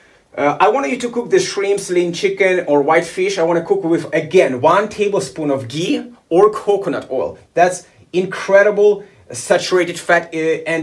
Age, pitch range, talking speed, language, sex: 30-49, 145-190 Hz, 170 wpm, English, male